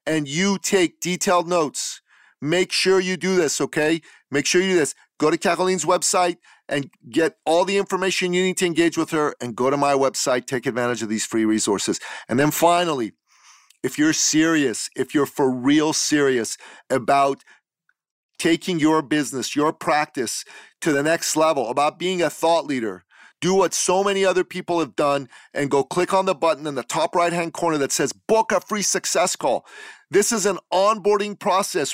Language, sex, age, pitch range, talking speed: English, male, 40-59, 155-190 Hz, 185 wpm